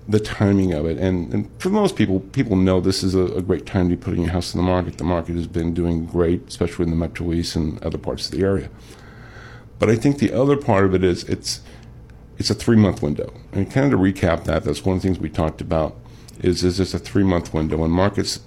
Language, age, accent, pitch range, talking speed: English, 50-69, American, 85-110 Hz, 260 wpm